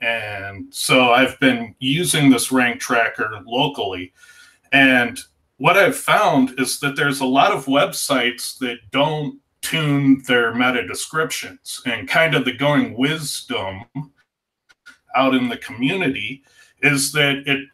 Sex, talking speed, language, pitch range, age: male, 130 wpm, English, 120-140 Hz, 30-49